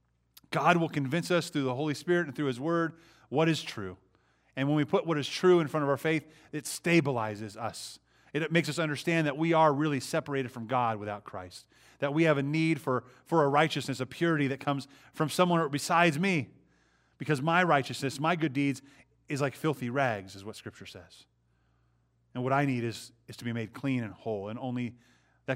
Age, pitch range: 30-49, 110-155 Hz